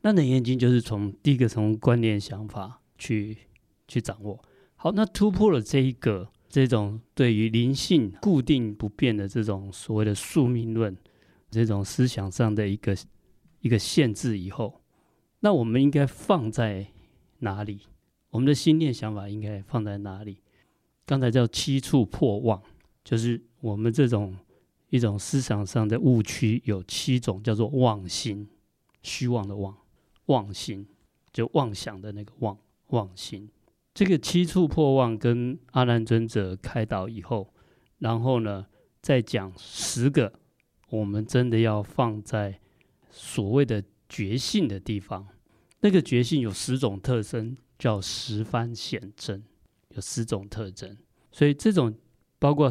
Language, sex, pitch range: Chinese, male, 105-130 Hz